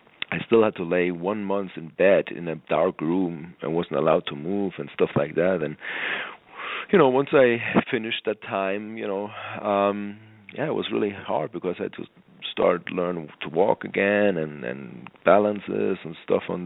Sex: male